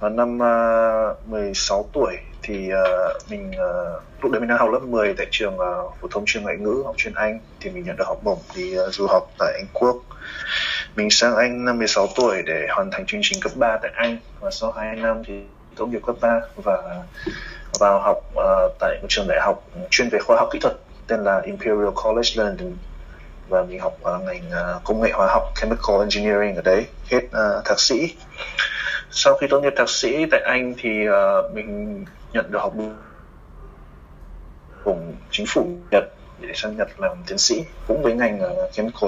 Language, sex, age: Vietnamese, male, 20-39